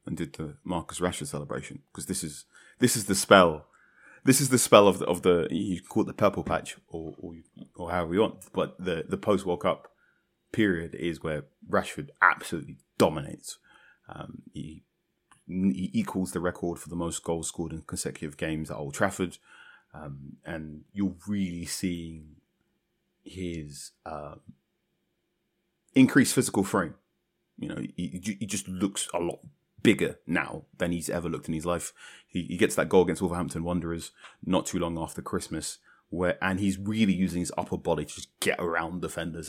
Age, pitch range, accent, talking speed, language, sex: 30-49, 80-95 Hz, British, 180 wpm, English, male